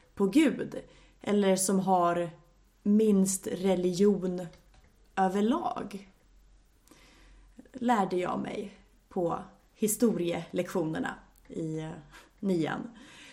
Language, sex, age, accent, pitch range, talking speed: Swedish, female, 30-49, native, 185-240 Hz, 70 wpm